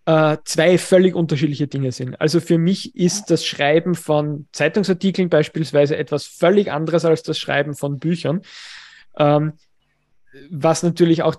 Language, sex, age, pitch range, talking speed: German, male, 20-39, 150-175 Hz, 135 wpm